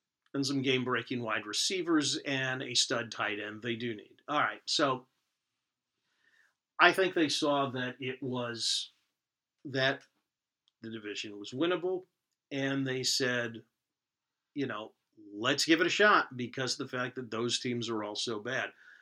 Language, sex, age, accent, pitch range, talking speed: English, male, 40-59, American, 120-150 Hz, 150 wpm